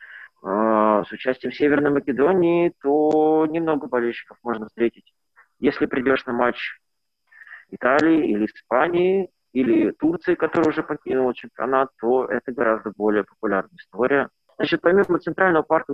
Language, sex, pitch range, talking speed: Russian, male, 125-160 Hz, 125 wpm